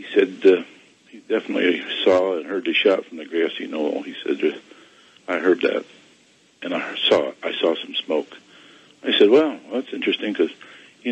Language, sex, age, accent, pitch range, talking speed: English, male, 50-69, American, 275-395 Hz, 185 wpm